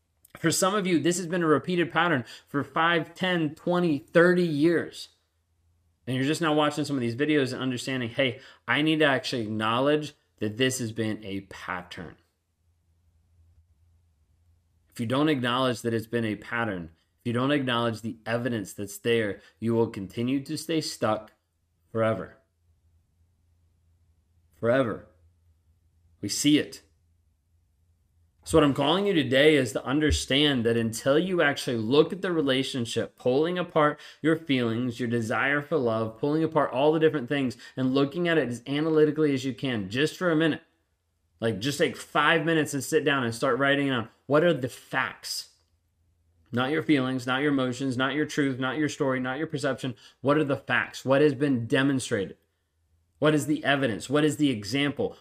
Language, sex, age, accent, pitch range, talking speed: English, male, 30-49, American, 95-150 Hz, 170 wpm